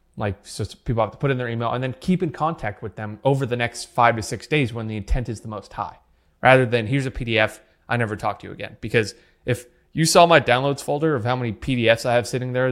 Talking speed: 265 wpm